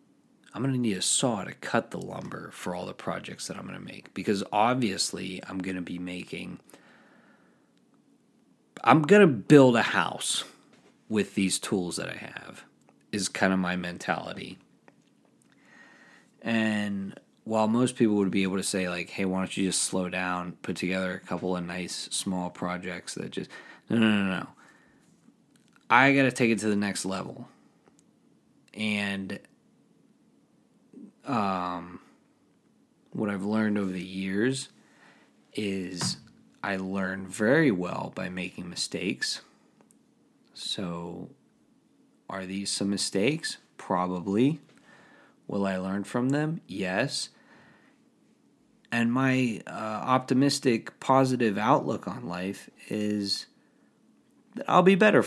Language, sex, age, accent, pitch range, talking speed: English, male, 30-49, American, 90-115 Hz, 135 wpm